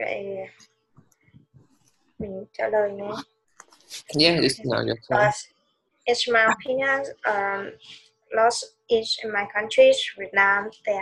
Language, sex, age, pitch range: English, female, 20-39, 200-255 Hz